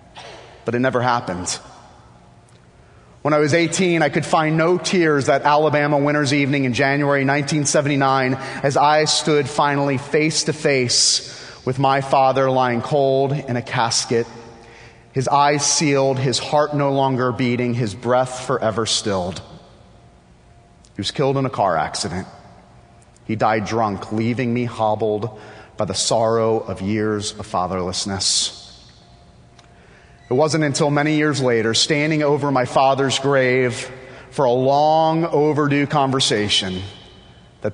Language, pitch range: English, 115-150 Hz